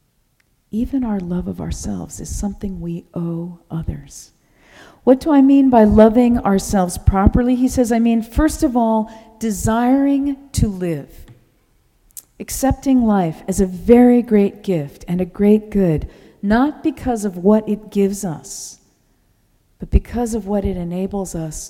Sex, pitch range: female, 180-230 Hz